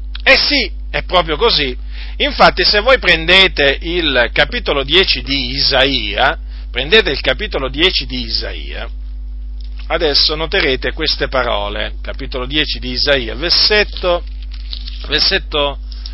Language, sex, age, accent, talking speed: Italian, male, 50-69, native, 110 wpm